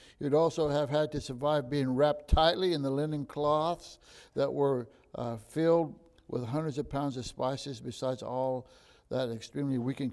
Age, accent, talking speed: 60-79, American, 170 wpm